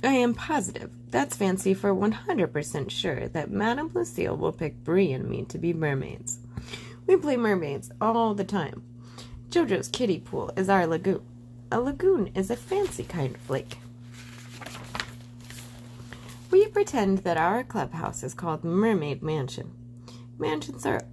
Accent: American